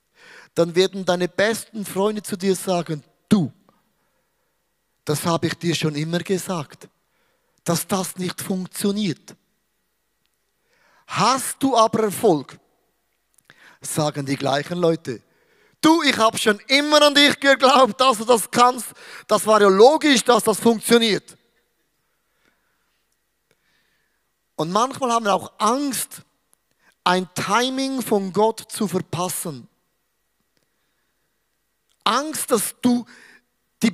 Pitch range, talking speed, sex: 180-220 Hz, 110 wpm, male